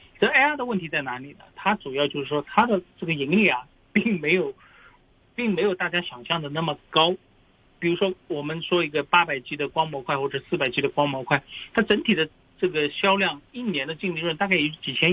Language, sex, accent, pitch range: Chinese, male, native, 135-180 Hz